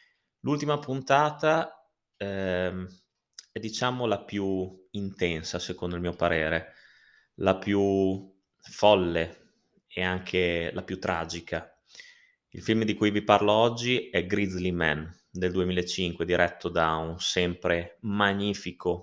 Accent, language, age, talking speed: native, Italian, 20-39, 115 wpm